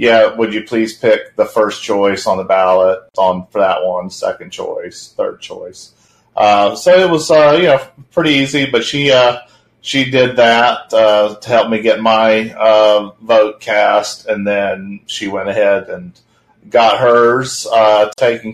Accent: American